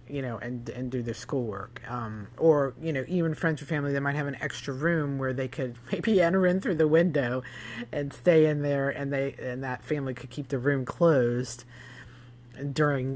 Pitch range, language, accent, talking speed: 120-165 Hz, English, American, 205 wpm